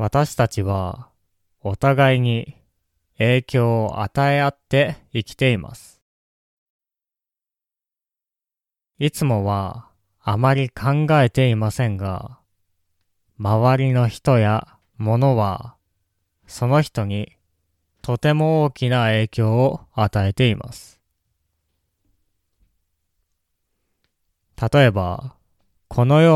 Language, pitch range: Japanese, 95-130 Hz